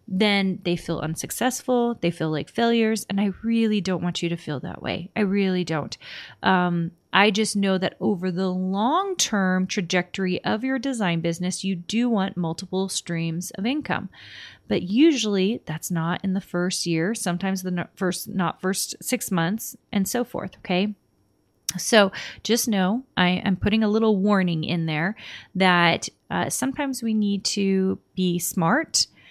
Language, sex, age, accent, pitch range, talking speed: English, female, 30-49, American, 175-210 Hz, 160 wpm